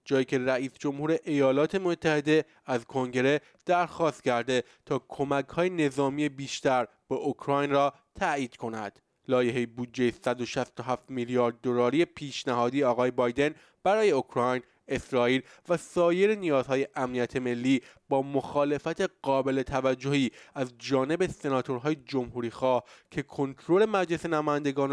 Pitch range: 125-150 Hz